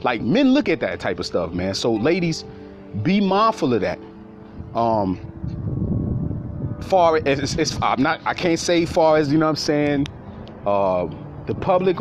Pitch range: 120-185 Hz